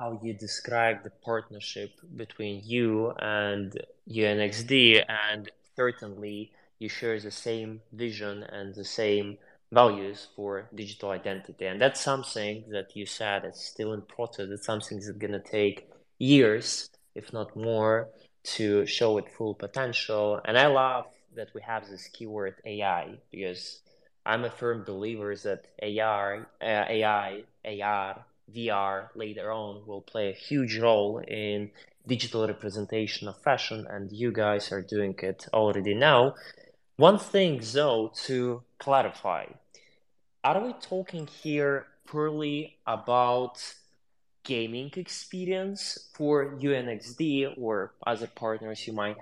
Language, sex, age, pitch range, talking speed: English, male, 20-39, 105-130 Hz, 130 wpm